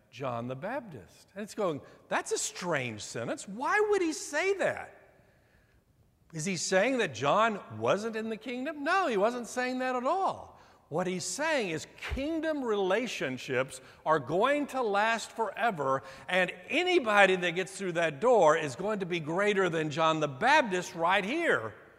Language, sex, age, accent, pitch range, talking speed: English, male, 60-79, American, 140-225 Hz, 165 wpm